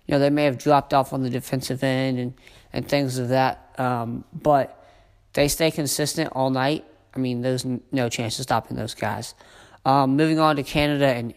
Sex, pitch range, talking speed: male, 120-140 Hz, 200 wpm